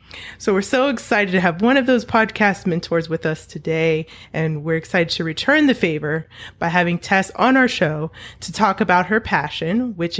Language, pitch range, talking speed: English, 165-210 Hz, 195 wpm